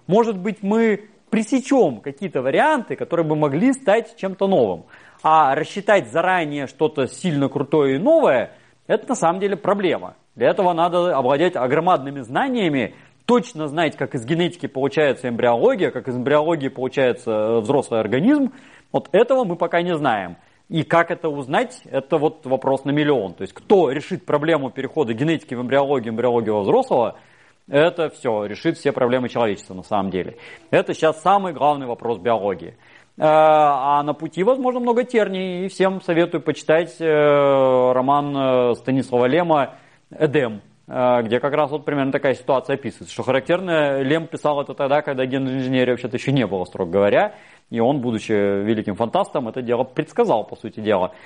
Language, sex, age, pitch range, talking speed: Russian, male, 30-49, 130-175 Hz, 160 wpm